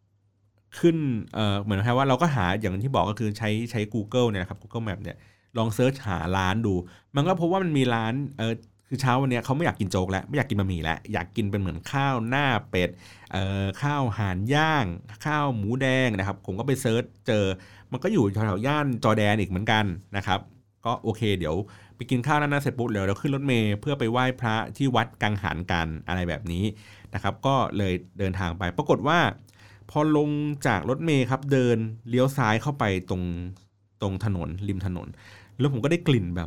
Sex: male